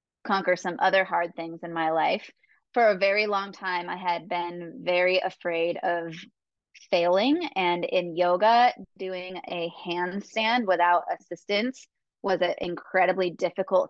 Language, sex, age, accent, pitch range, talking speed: English, female, 20-39, American, 170-190 Hz, 140 wpm